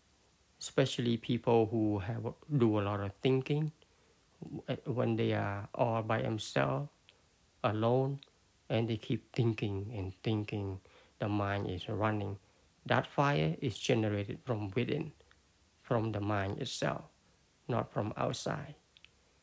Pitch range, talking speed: 100-130 Hz, 120 wpm